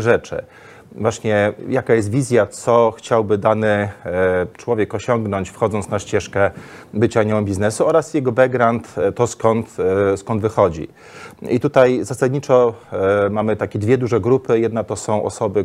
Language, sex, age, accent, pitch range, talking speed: Polish, male, 30-49, native, 100-120 Hz, 135 wpm